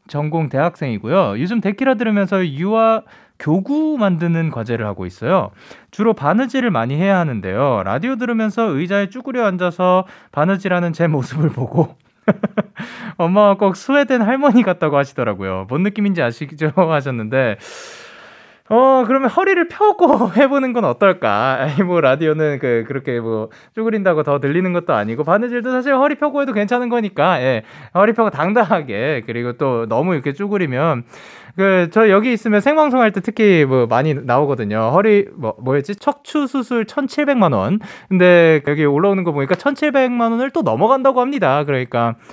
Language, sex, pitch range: Korean, male, 135-215 Hz